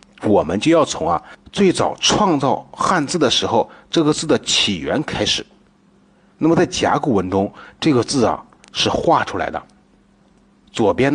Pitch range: 115-160 Hz